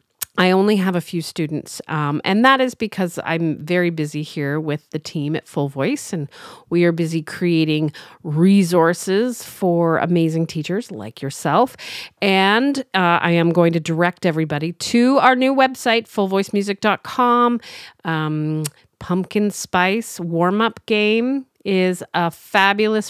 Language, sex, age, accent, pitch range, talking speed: English, female, 40-59, American, 160-210 Hz, 135 wpm